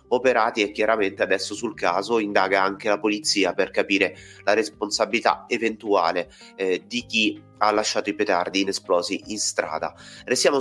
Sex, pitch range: male, 95-120 Hz